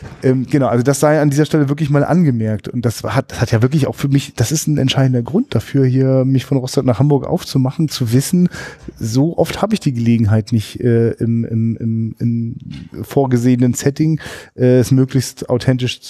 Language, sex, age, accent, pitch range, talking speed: German, male, 30-49, German, 115-140 Hz, 190 wpm